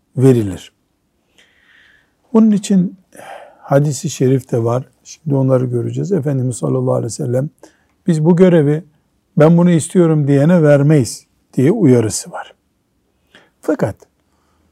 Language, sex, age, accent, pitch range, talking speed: Turkish, male, 60-79, native, 125-165 Hz, 110 wpm